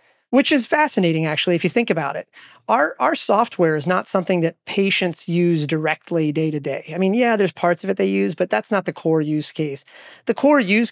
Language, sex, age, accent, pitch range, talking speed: English, male, 30-49, American, 165-200 Hz, 225 wpm